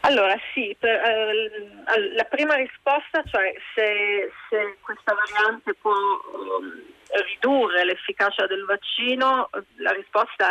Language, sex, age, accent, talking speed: Italian, female, 40-59, native, 115 wpm